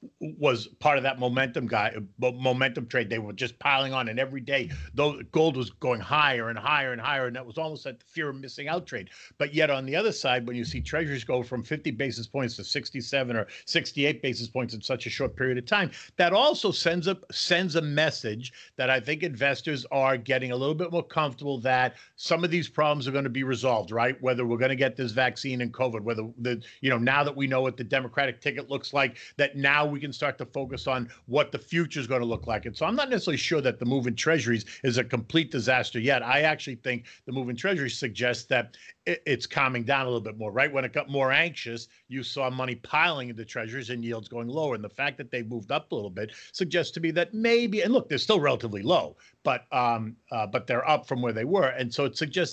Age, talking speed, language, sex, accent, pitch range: 50-69, 240 wpm, English, male, American, 125-150 Hz